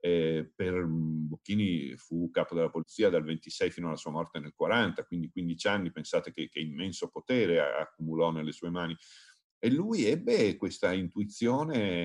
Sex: male